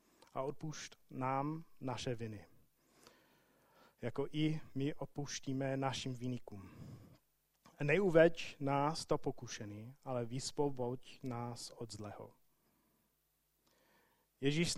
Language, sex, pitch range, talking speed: Czech, male, 130-155 Hz, 85 wpm